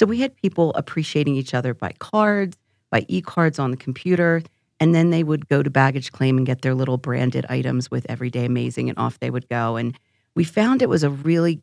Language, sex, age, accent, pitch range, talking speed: English, female, 40-59, American, 125-155 Hz, 220 wpm